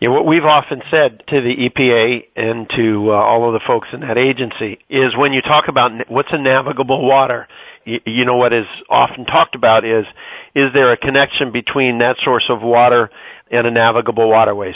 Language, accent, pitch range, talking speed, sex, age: English, American, 115-135 Hz, 190 wpm, male, 50-69